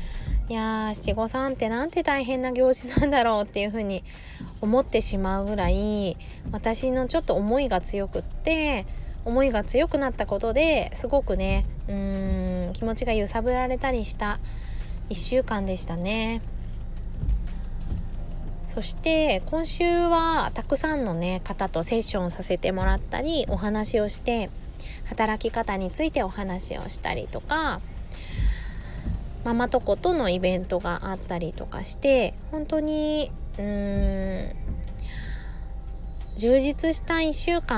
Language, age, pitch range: Japanese, 20-39, 185-265 Hz